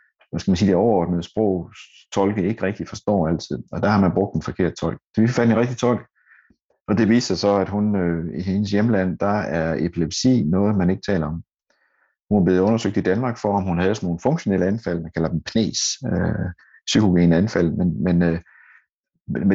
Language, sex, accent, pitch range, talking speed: Danish, male, native, 85-110 Hz, 210 wpm